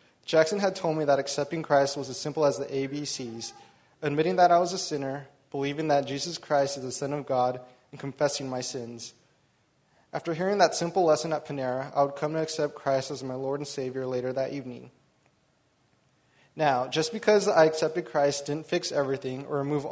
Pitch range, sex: 135-160 Hz, male